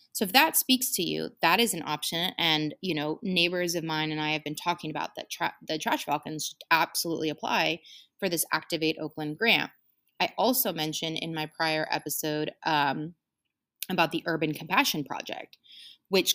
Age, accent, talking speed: 20-39, American, 175 wpm